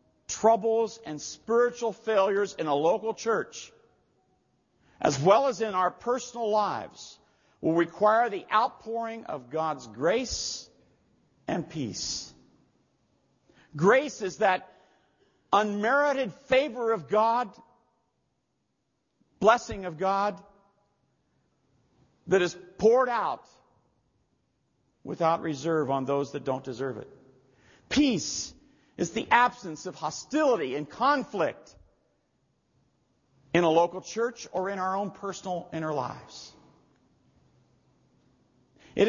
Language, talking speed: English, 100 wpm